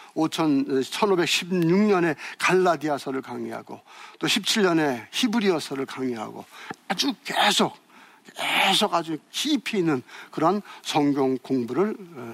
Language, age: Korean, 60-79